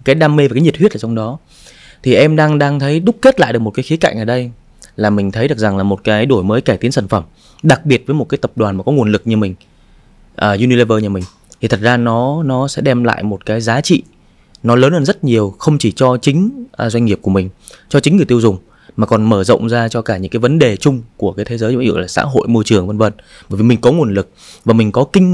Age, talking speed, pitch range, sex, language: 20-39, 290 wpm, 105-140 Hz, male, Vietnamese